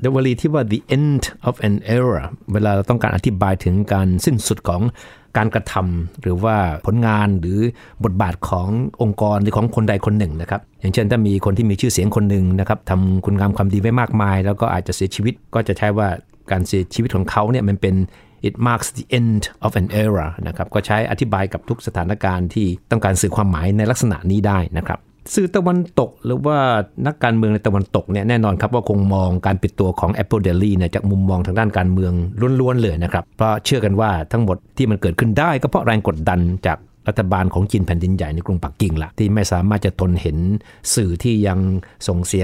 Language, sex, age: Thai, male, 60-79